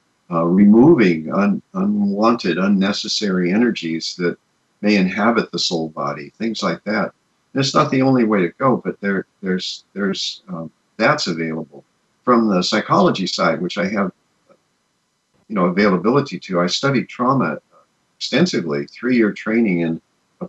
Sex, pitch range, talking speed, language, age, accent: male, 90-115 Hz, 145 wpm, English, 50-69, American